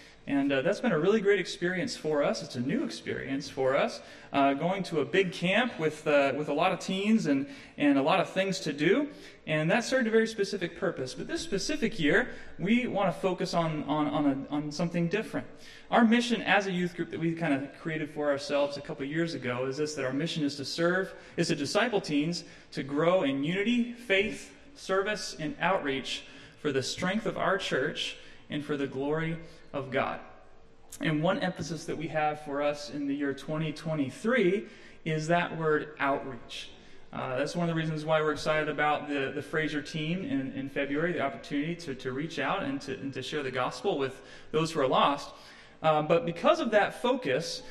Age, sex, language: 30-49, male, English